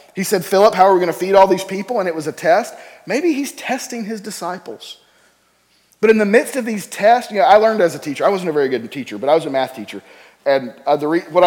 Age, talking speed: 40-59, 260 wpm